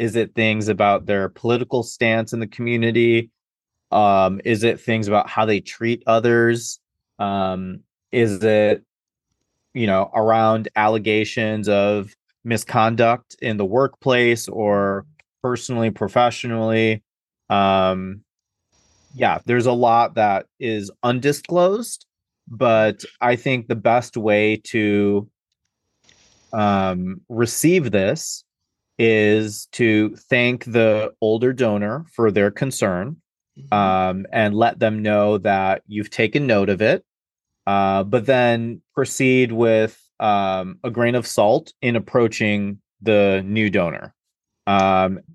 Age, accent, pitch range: 30-49, American, 105-120 Hz